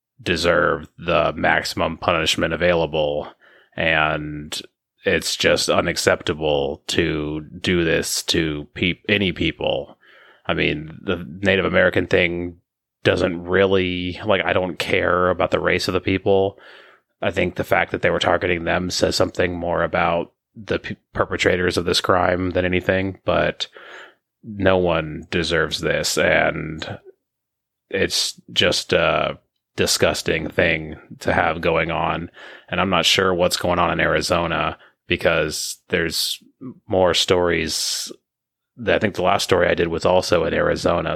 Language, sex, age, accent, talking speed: English, male, 30-49, American, 135 wpm